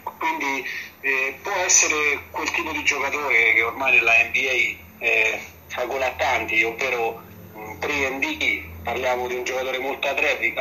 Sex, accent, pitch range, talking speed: male, native, 120-140 Hz, 140 wpm